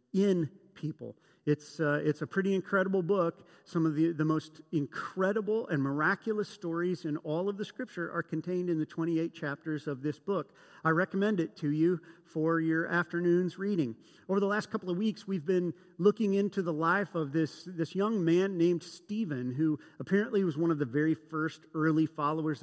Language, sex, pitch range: English, male, 150-190 Hz